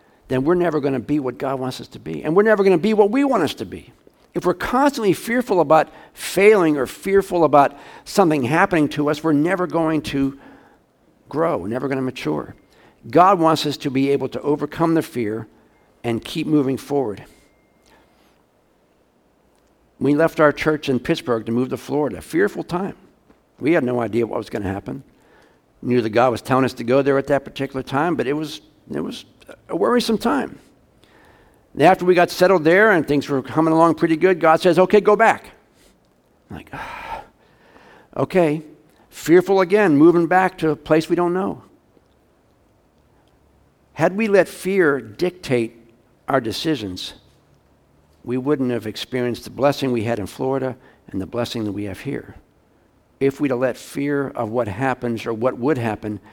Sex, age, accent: male, 60-79, American